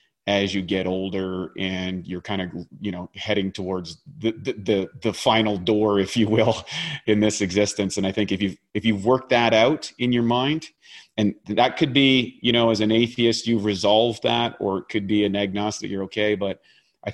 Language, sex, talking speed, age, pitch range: English, male, 205 wpm, 30-49, 95-110 Hz